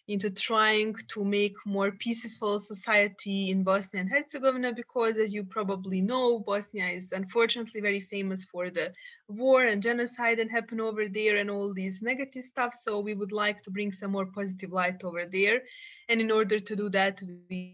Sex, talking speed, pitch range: female, 185 wpm, 195-240 Hz